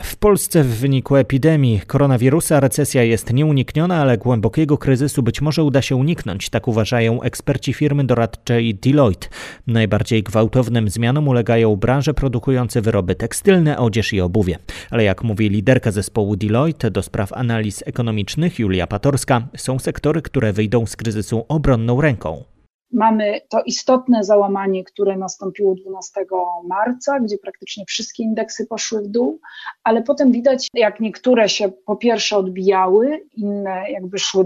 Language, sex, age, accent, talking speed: Polish, male, 30-49, native, 140 wpm